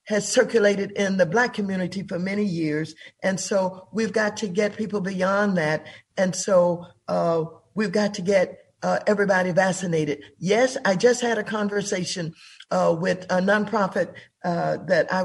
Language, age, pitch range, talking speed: English, 50-69, 180-215 Hz, 160 wpm